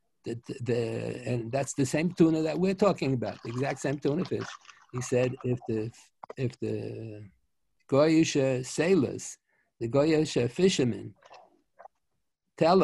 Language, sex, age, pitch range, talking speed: English, male, 60-79, 125-150 Hz, 135 wpm